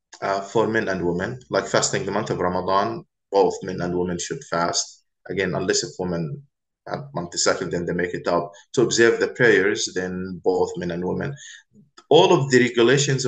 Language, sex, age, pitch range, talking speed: English, male, 20-39, 90-125 Hz, 185 wpm